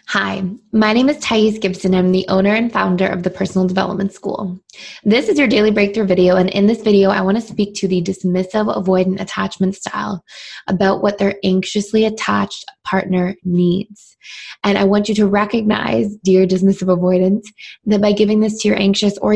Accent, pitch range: American, 190-215 Hz